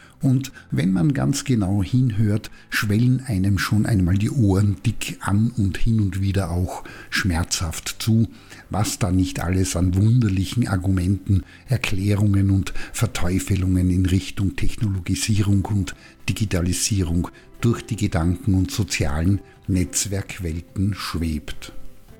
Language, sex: German, male